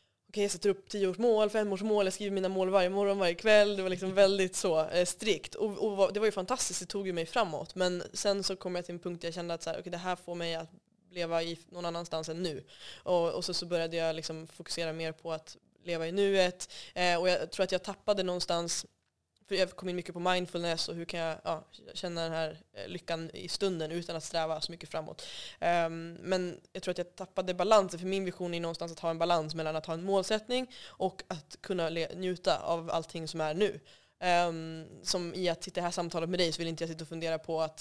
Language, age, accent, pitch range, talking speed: Swedish, 20-39, native, 160-185 Hz, 250 wpm